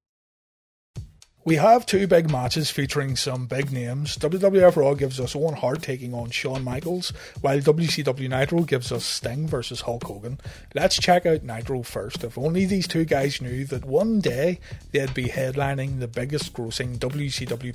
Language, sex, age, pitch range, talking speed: English, male, 30-49, 125-160 Hz, 165 wpm